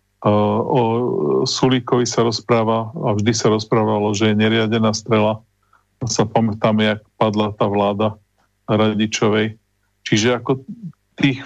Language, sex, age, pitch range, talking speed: Slovak, male, 40-59, 105-120 Hz, 115 wpm